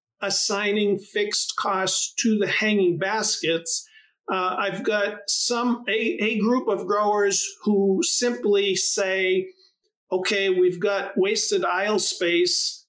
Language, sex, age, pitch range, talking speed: English, male, 50-69, 170-210 Hz, 115 wpm